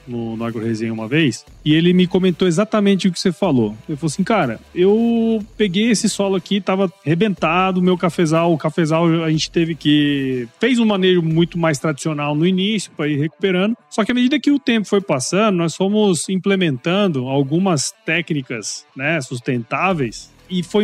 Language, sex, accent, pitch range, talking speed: Portuguese, male, Brazilian, 145-200 Hz, 180 wpm